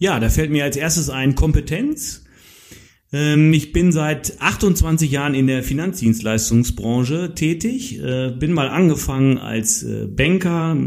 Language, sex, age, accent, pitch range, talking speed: German, male, 40-59, German, 105-140 Hz, 120 wpm